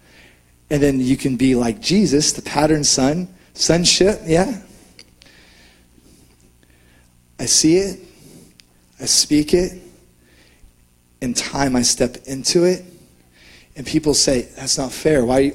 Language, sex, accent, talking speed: English, male, American, 120 wpm